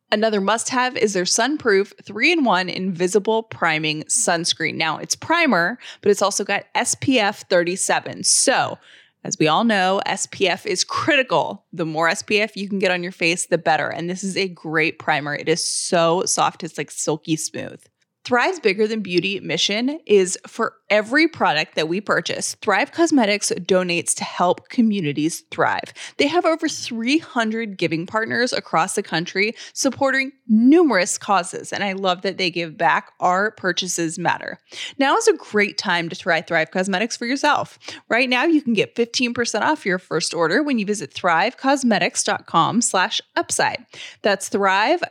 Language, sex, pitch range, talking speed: English, female, 175-245 Hz, 160 wpm